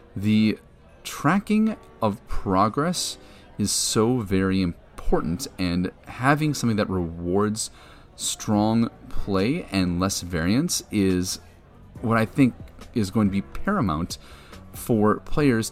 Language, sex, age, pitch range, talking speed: English, male, 30-49, 85-115 Hz, 110 wpm